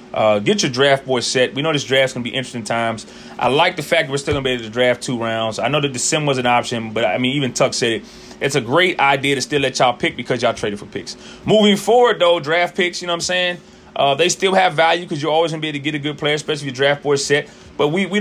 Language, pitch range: English, 135-165 Hz